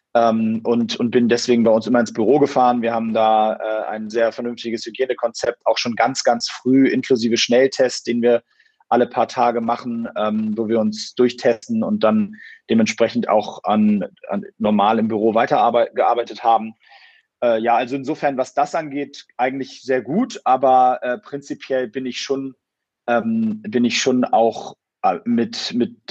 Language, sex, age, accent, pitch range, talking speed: German, male, 30-49, German, 110-130 Hz, 150 wpm